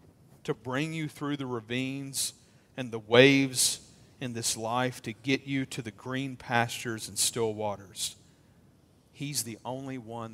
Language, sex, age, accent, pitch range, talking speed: English, male, 50-69, American, 110-130 Hz, 150 wpm